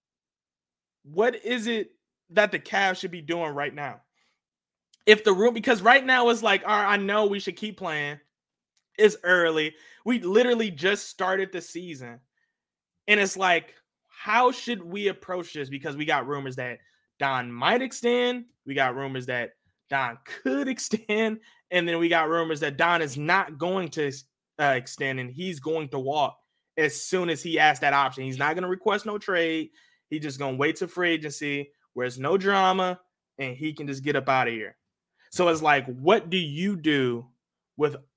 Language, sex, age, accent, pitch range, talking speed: English, male, 20-39, American, 145-205 Hz, 185 wpm